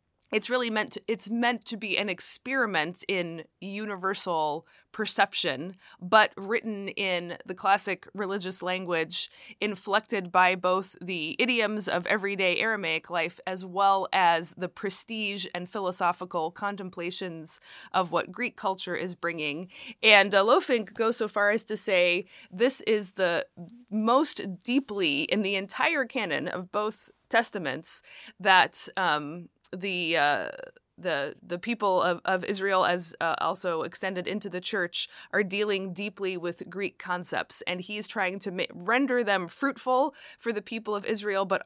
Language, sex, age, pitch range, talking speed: English, female, 20-39, 180-215 Hz, 145 wpm